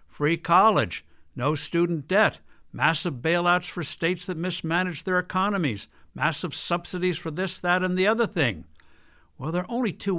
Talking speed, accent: 160 wpm, American